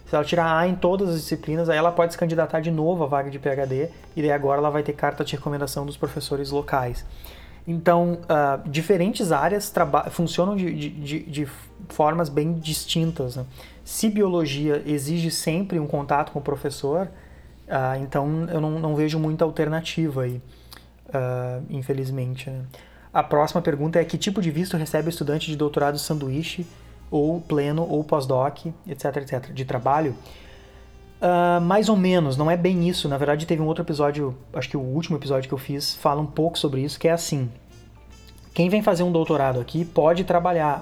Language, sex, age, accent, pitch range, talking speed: Portuguese, male, 20-39, Brazilian, 140-170 Hz, 185 wpm